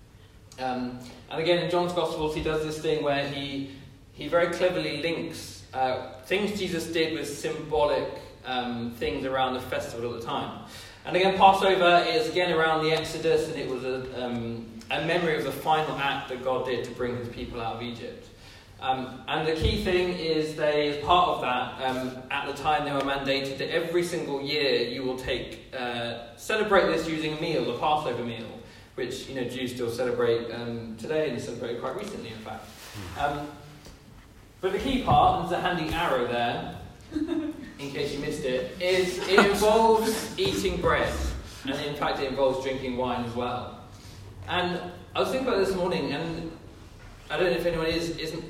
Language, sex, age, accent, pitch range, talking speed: English, male, 20-39, British, 120-165 Hz, 190 wpm